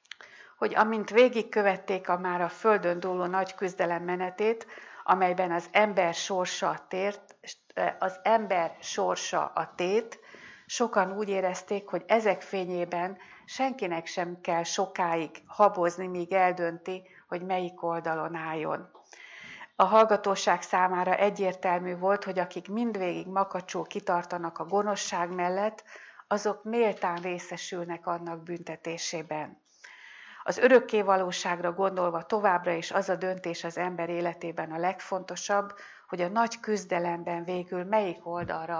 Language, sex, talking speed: Hungarian, female, 120 wpm